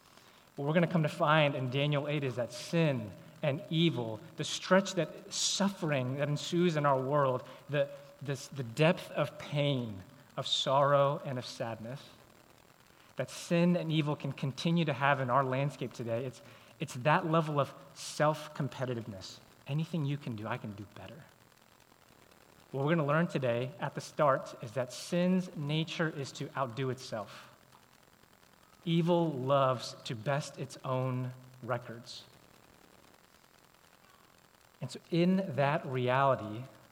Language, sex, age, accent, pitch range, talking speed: English, male, 30-49, American, 130-155 Hz, 145 wpm